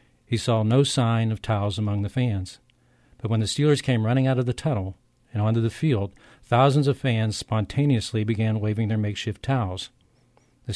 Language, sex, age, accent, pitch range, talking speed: English, male, 50-69, American, 105-125 Hz, 185 wpm